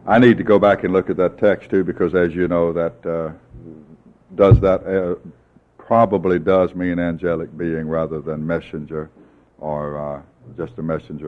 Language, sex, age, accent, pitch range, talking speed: English, male, 60-79, American, 80-95 Hz, 175 wpm